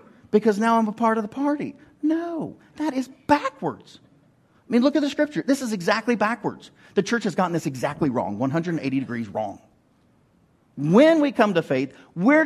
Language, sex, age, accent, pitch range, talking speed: English, male, 40-59, American, 145-230 Hz, 185 wpm